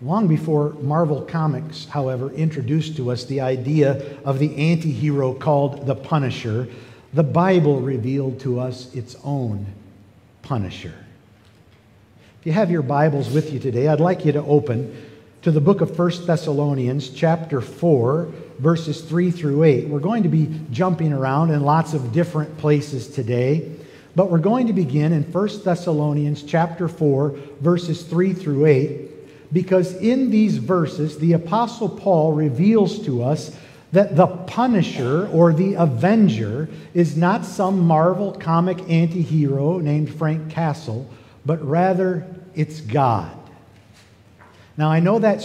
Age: 50-69